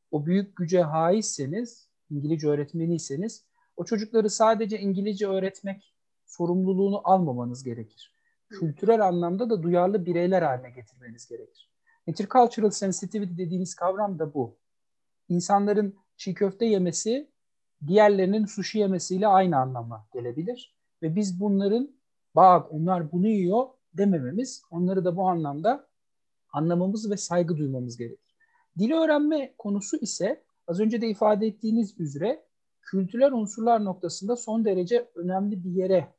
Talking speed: 120 wpm